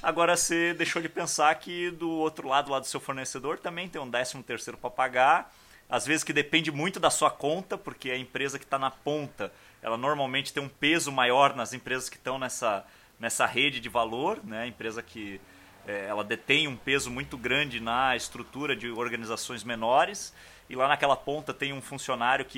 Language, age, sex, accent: Portuguese, 30-49, male, Brazilian